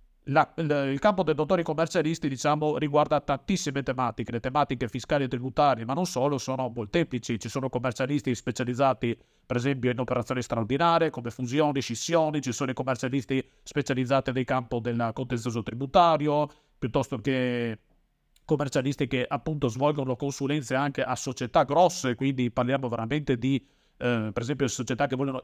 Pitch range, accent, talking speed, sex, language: 130-170 Hz, native, 150 wpm, male, Italian